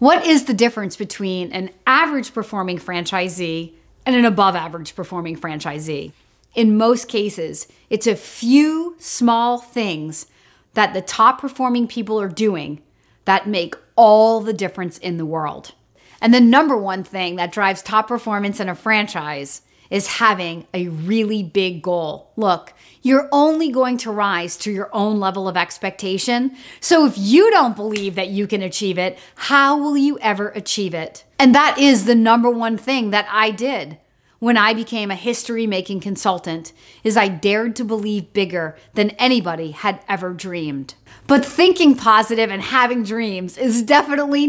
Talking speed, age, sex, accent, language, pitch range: 160 wpm, 40-59, female, American, English, 180-235 Hz